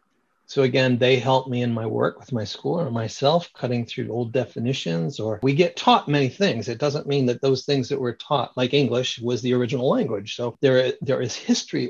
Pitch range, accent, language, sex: 120-145 Hz, American, English, male